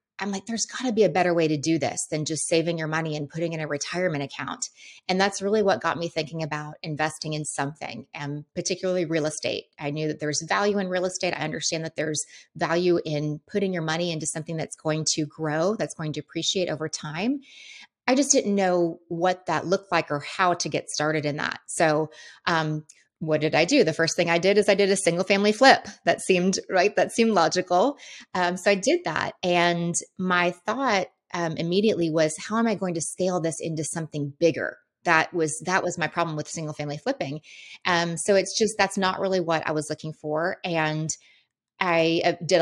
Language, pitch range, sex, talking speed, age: English, 155-185 Hz, female, 215 wpm, 30-49